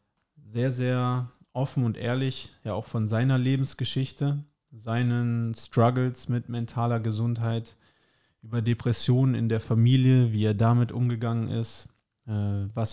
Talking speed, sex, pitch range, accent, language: 120 wpm, male, 110-125 Hz, German, German